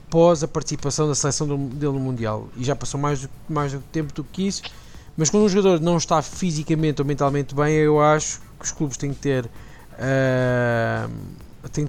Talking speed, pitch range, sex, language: 175 wpm, 145-180 Hz, male, Portuguese